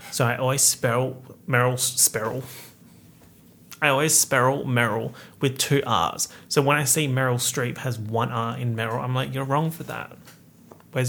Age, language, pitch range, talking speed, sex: 30-49, English, 115-140 Hz, 170 wpm, male